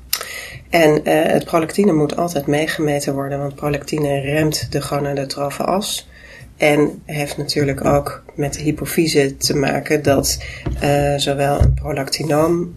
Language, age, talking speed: Dutch, 30-49, 125 wpm